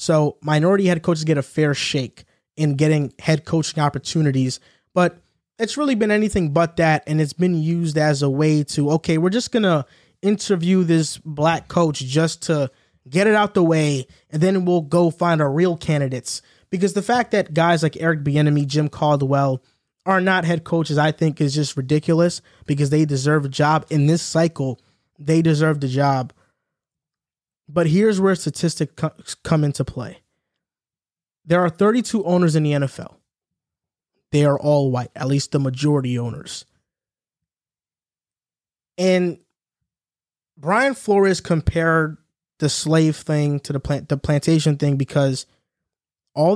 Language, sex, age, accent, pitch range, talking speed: English, male, 20-39, American, 145-175 Hz, 155 wpm